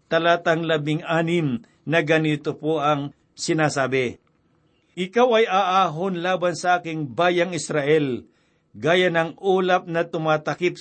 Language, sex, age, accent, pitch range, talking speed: Filipino, male, 60-79, native, 155-185 Hz, 115 wpm